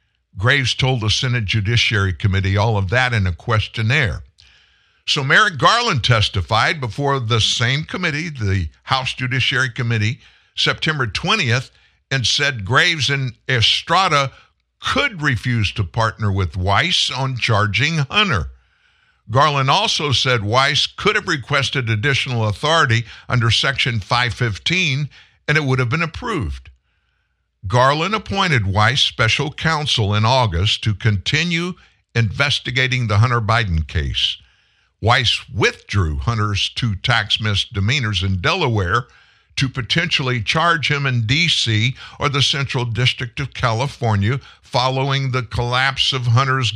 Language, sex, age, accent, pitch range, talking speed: English, male, 60-79, American, 105-140 Hz, 125 wpm